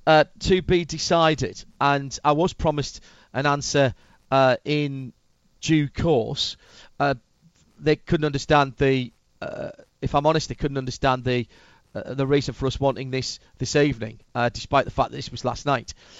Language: English